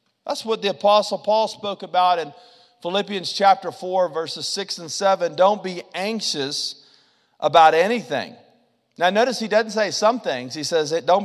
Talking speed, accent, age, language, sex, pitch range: 160 wpm, American, 40-59, English, male, 190-255 Hz